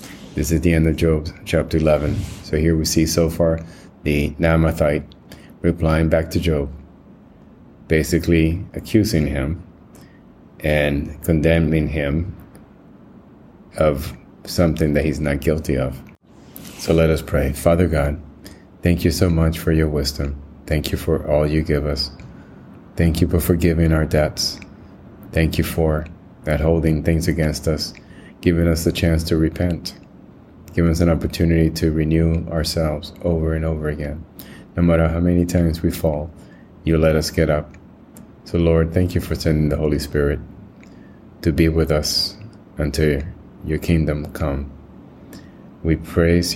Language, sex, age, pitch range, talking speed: English, male, 30-49, 75-85 Hz, 150 wpm